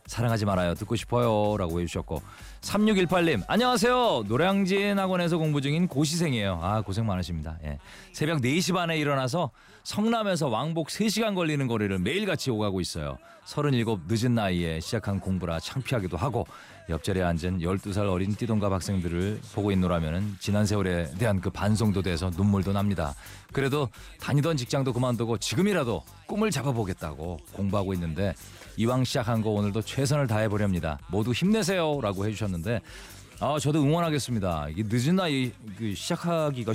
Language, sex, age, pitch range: Korean, male, 40-59, 95-145 Hz